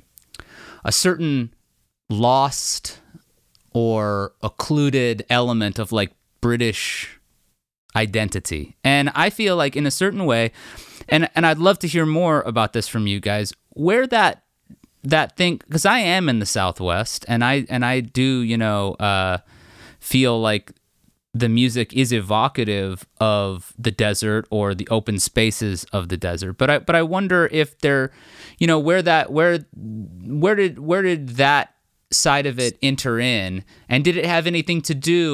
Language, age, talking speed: English, 30-49, 160 wpm